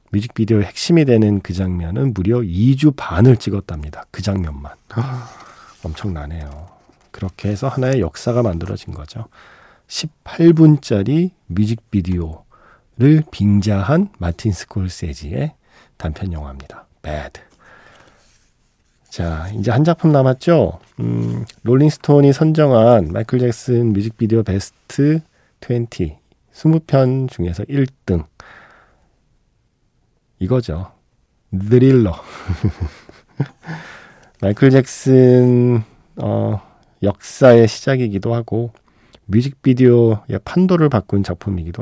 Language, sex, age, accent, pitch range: Korean, male, 40-59, native, 95-130 Hz